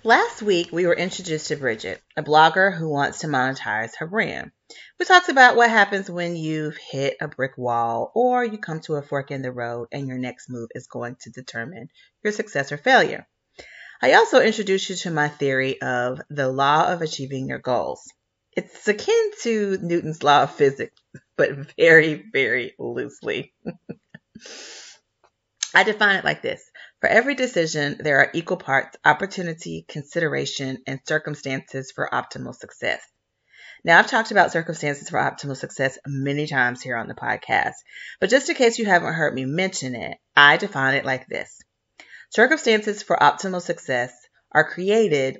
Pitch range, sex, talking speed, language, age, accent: 135-185 Hz, female, 165 wpm, English, 30-49, American